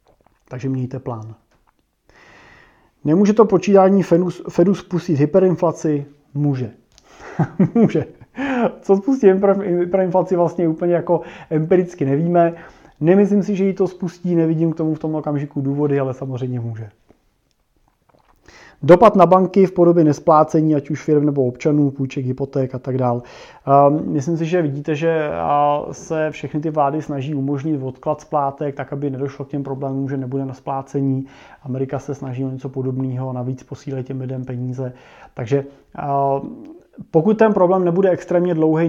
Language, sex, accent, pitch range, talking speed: Czech, male, native, 140-165 Hz, 140 wpm